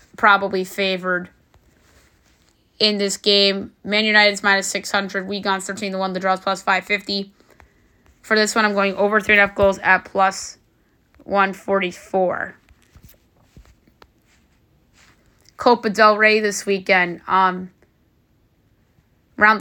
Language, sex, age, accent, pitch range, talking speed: English, female, 20-39, American, 190-205 Hz, 120 wpm